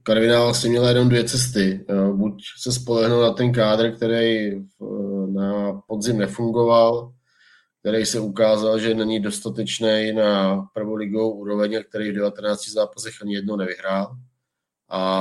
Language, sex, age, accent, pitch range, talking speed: Czech, male, 20-39, native, 100-110 Hz, 130 wpm